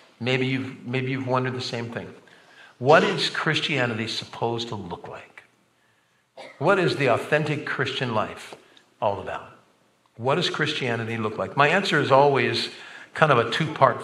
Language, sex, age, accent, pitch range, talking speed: English, male, 50-69, American, 120-145 Hz, 155 wpm